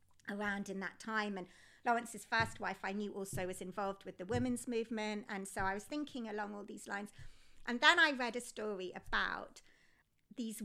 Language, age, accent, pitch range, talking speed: English, 50-69, British, 195-250 Hz, 190 wpm